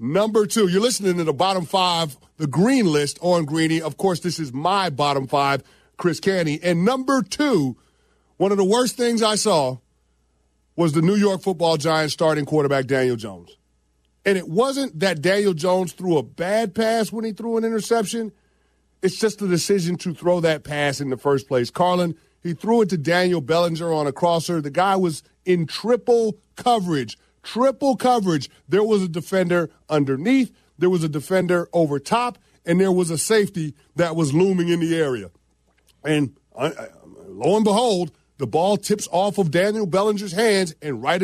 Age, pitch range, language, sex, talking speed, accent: 40-59, 150-205 Hz, English, male, 180 wpm, American